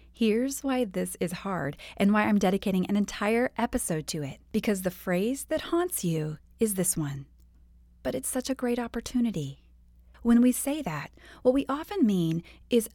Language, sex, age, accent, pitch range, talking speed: English, female, 30-49, American, 165-235 Hz, 175 wpm